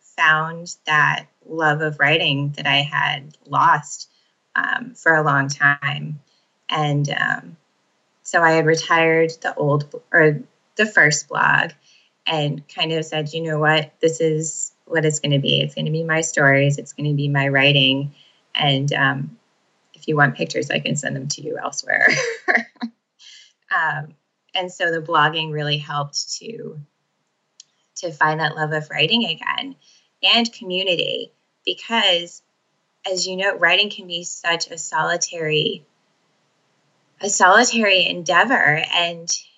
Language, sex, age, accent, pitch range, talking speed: English, female, 20-39, American, 150-195 Hz, 145 wpm